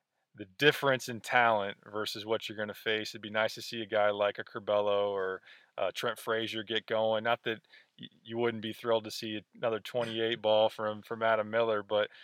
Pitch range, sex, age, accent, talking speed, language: 110-125 Hz, male, 20-39, American, 205 wpm, English